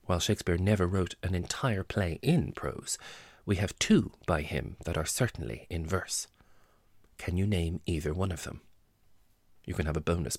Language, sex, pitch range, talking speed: English, male, 85-110 Hz, 180 wpm